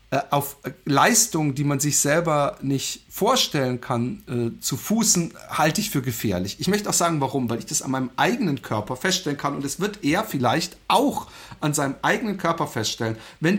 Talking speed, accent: 185 wpm, German